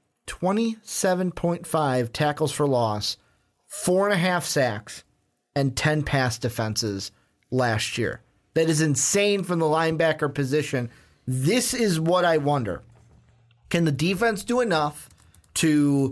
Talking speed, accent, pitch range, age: 110 wpm, American, 130-175 Hz, 30-49